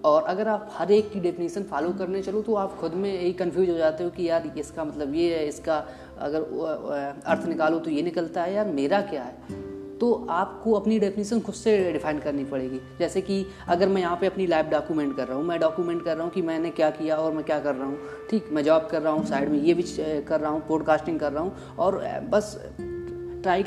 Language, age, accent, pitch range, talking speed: Hindi, 30-49, native, 155-195 Hz, 235 wpm